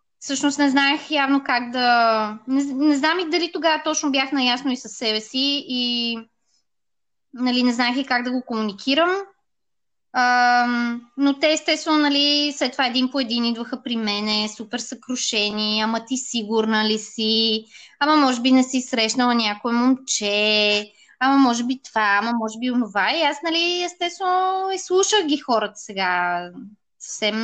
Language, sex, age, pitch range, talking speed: Bulgarian, female, 20-39, 225-290 Hz, 160 wpm